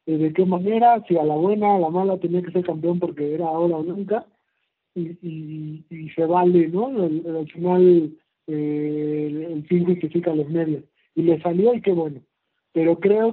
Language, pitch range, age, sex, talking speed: Spanish, 155-185 Hz, 50-69, male, 190 wpm